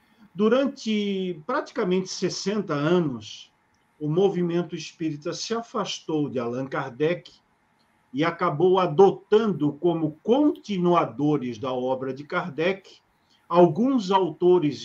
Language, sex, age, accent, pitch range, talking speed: Portuguese, male, 50-69, Brazilian, 145-185 Hz, 95 wpm